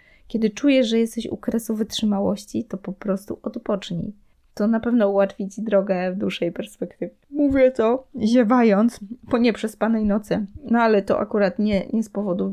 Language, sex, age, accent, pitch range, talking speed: Polish, female, 20-39, native, 195-230 Hz, 165 wpm